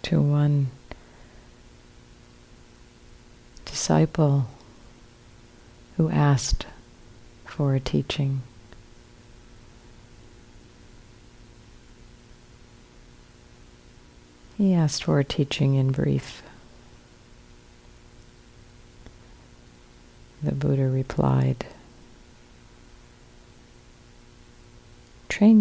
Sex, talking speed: female, 45 wpm